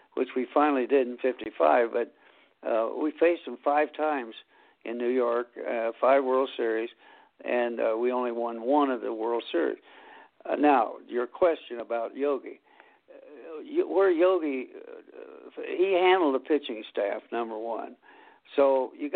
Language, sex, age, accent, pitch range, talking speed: English, male, 60-79, American, 125-190 Hz, 155 wpm